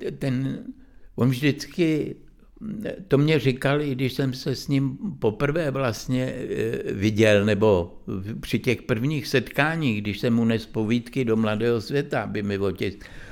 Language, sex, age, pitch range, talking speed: Czech, male, 60-79, 115-135 Hz, 135 wpm